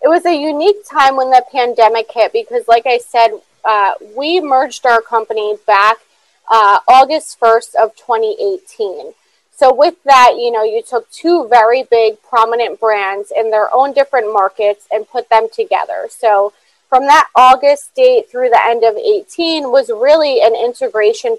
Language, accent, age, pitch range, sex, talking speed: English, American, 30-49, 220-280 Hz, female, 165 wpm